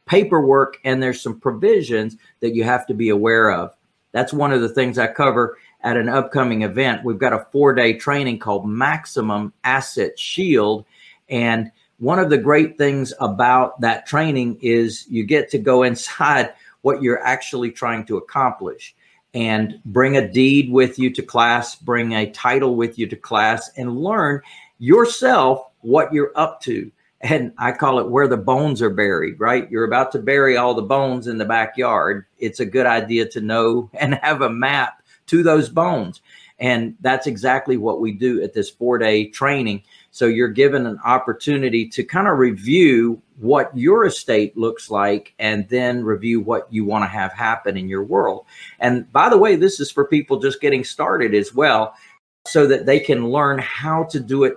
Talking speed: 185 wpm